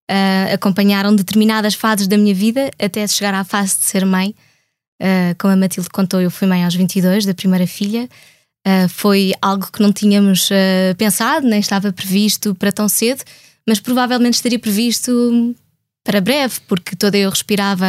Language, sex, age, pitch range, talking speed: Portuguese, female, 20-39, 185-215 Hz, 170 wpm